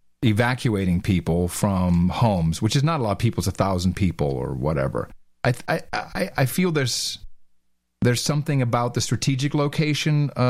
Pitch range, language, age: 95-130 Hz, English, 40-59